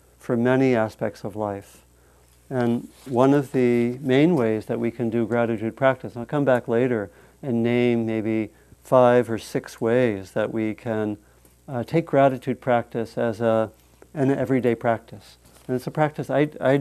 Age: 50-69